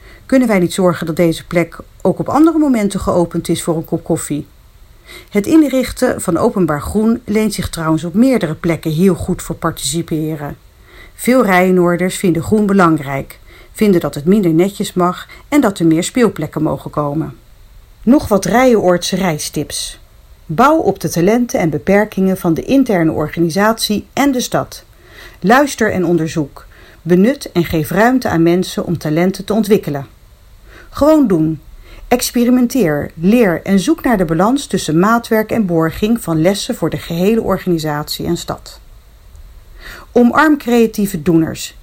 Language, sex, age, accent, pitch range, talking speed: Dutch, female, 40-59, Dutch, 165-225 Hz, 150 wpm